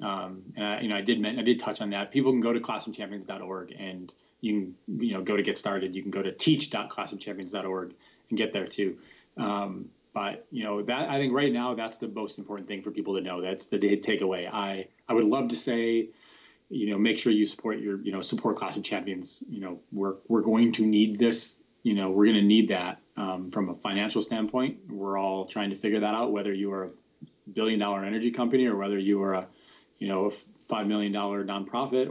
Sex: male